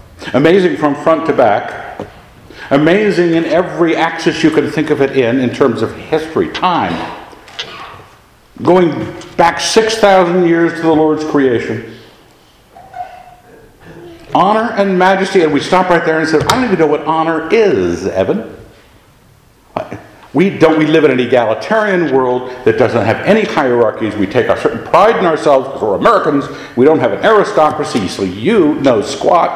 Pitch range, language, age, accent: 135-200 Hz, English, 60-79, American